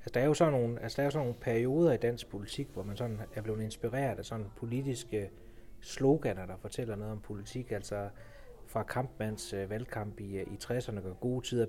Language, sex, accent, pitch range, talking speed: Danish, male, native, 105-130 Hz, 205 wpm